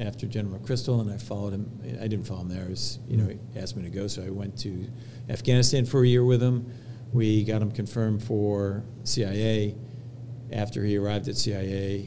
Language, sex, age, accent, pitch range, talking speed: English, male, 50-69, American, 105-120 Hz, 190 wpm